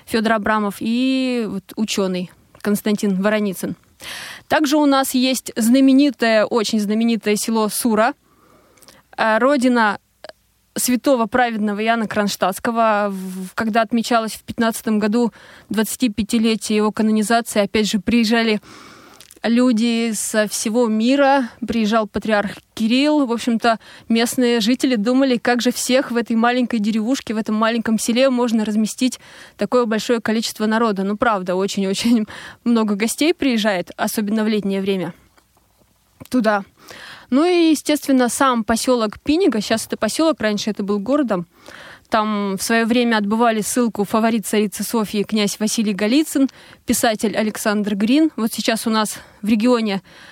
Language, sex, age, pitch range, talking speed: Russian, female, 20-39, 210-240 Hz, 125 wpm